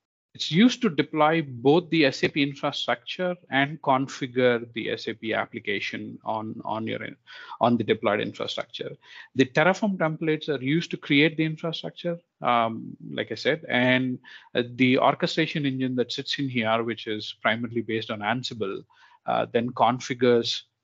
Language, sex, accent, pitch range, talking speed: English, male, Indian, 115-150 Hz, 145 wpm